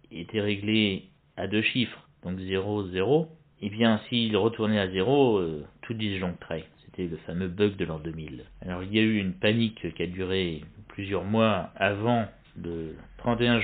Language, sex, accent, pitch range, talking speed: French, male, French, 90-115 Hz, 175 wpm